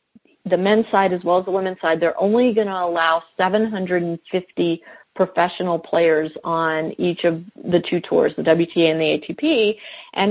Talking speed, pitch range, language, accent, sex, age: 170 wpm, 175-220 Hz, English, American, female, 40-59